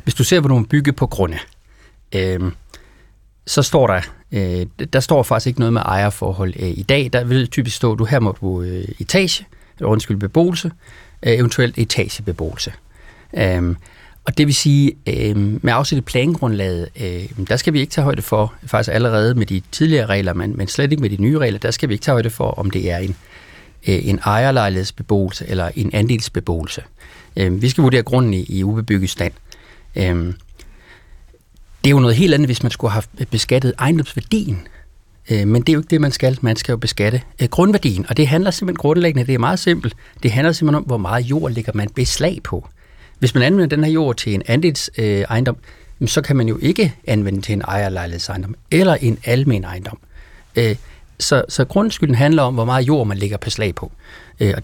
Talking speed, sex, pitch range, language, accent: 195 wpm, male, 100-135 Hz, Danish, native